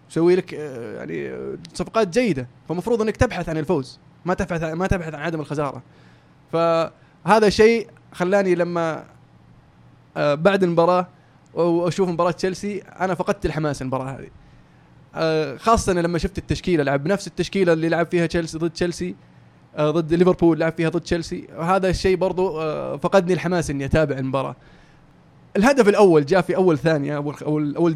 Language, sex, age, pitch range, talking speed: Arabic, male, 20-39, 155-185 Hz, 140 wpm